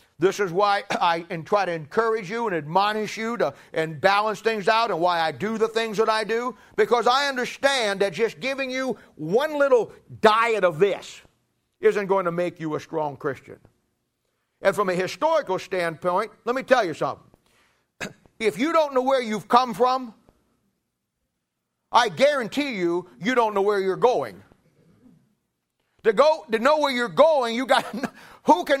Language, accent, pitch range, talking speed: English, American, 170-255 Hz, 175 wpm